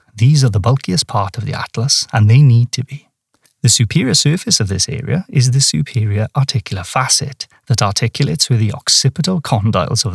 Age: 30-49